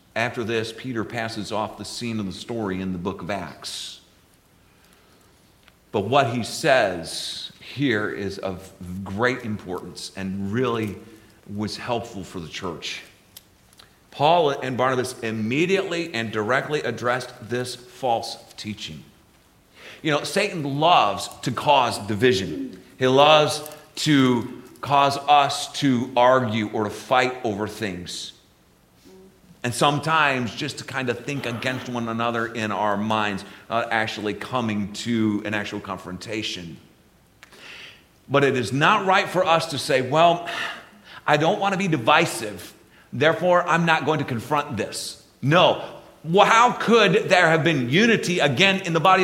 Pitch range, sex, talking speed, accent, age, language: 115-190 Hz, male, 140 wpm, American, 40-59, English